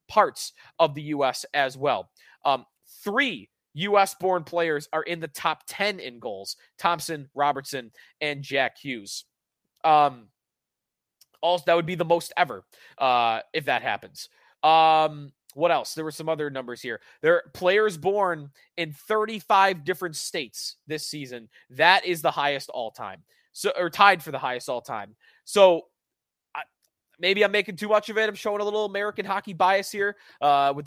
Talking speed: 165 wpm